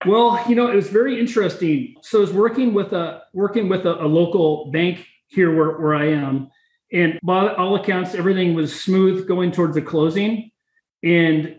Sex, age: male, 40-59